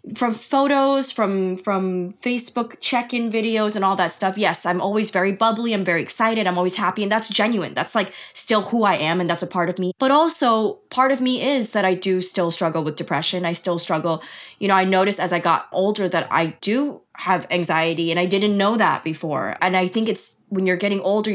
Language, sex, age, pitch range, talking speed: English, female, 20-39, 180-215 Hz, 225 wpm